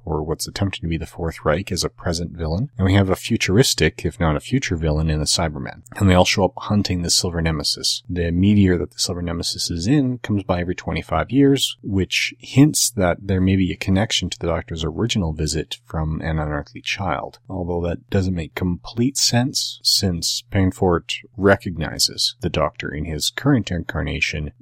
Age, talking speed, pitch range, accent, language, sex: 30-49, 195 wpm, 80-100 Hz, American, English, male